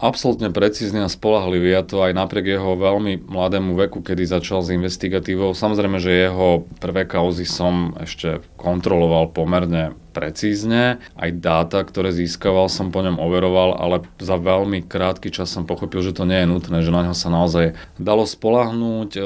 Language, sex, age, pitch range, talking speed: Slovak, male, 30-49, 85-95 Hz, 165 wpm